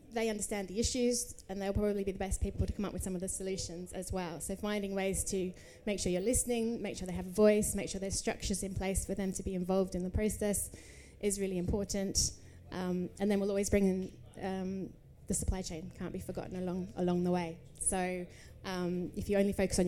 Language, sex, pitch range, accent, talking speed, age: English, female, 180-200 Hz, British, 230 wpm, 10-29